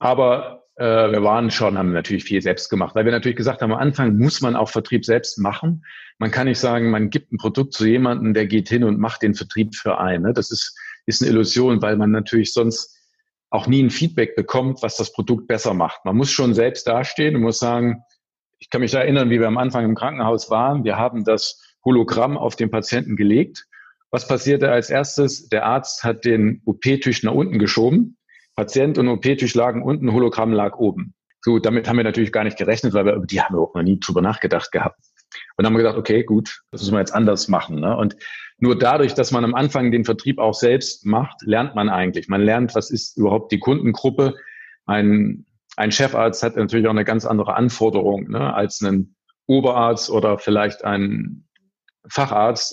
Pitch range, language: 110-125 Hz, German